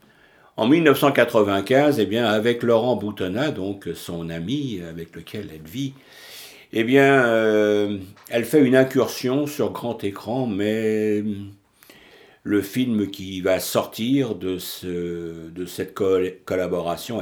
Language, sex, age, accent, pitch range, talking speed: French, male, 60-79, French, 95-130 Hz, 120 wpm